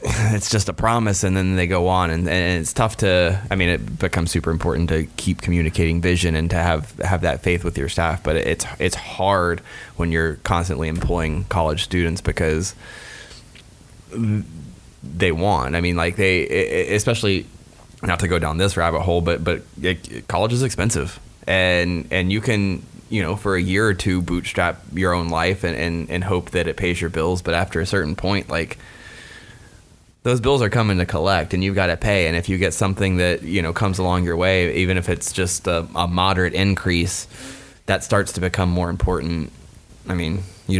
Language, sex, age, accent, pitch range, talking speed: English, male, 20-39, American, 85-95 Hz, 200 wpm